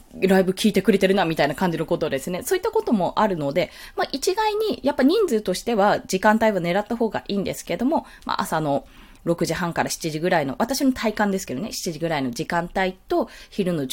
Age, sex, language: 20-39, female, Japanese